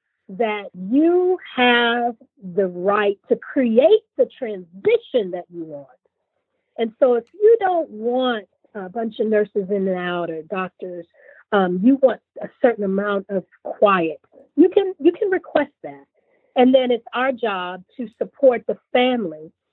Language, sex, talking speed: English, female, 150 wpm